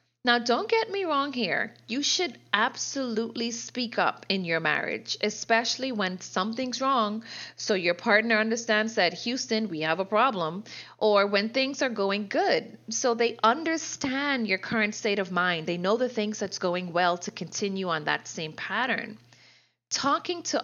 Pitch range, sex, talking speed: 180-235 Hz, female, 165 wpm